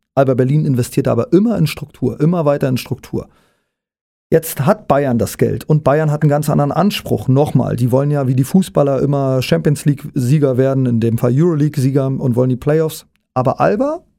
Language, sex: German, male